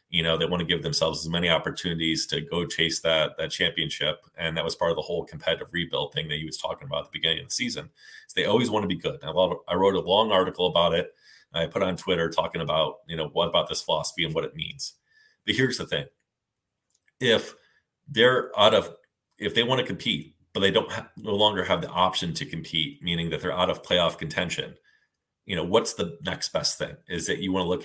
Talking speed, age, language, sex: 240 wpm, 30-49, English, male